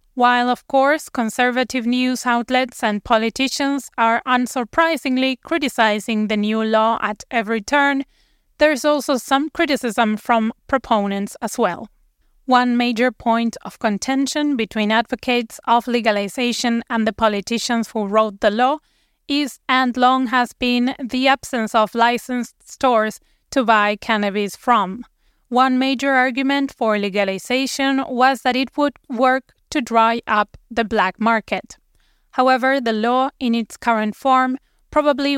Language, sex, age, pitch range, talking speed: English, female, 20-39, 225-265 Hz, 135 wpm